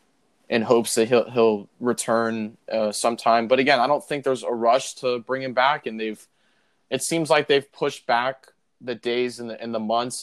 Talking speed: 205 wpm